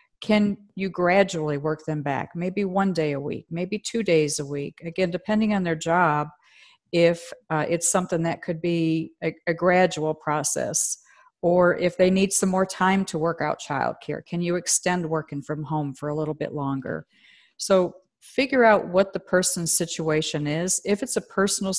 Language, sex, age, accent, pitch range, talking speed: English, female, 50-69, American, 160-195 Hz, 185 wpm